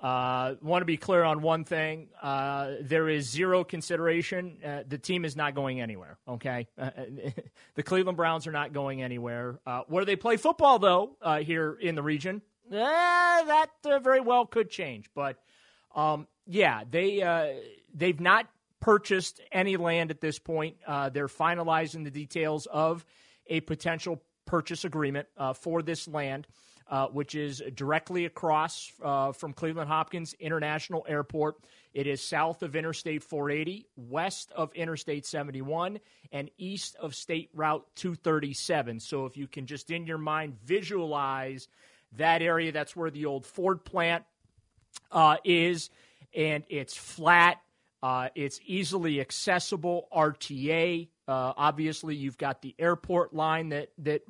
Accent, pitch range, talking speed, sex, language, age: American, 145-175 Hz, 150 wpm, male, English, 30-49